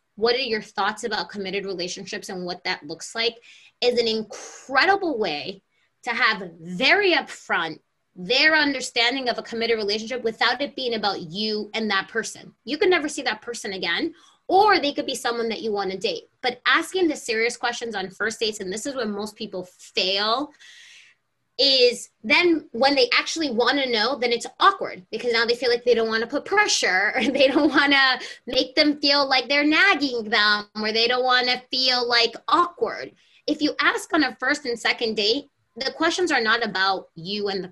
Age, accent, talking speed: 20-39, American, 200 wpm